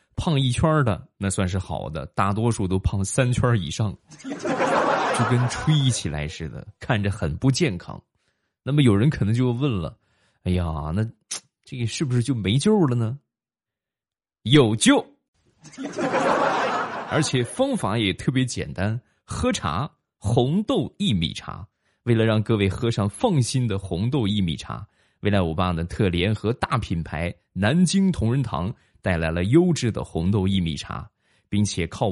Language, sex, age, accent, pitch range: Chinese, male, 20-39, native, 95-130 Hz